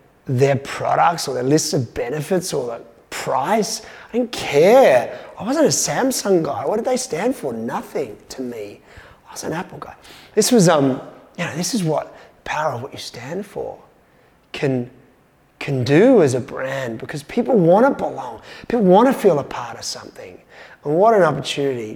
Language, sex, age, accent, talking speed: English, male, 30-49, Australian, 185 wpm